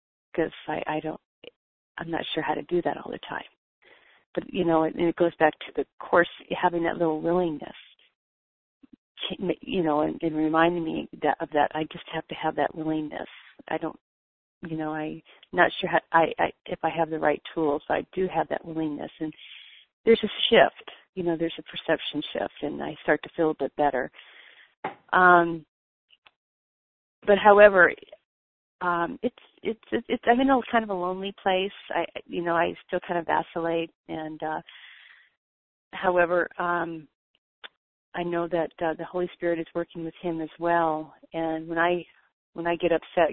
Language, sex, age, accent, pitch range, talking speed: English, female, 40-59, American, 155-175 Hz, 185 wpm